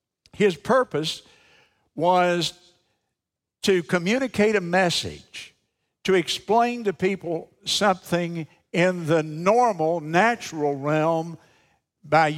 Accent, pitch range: American, 140-185 Hz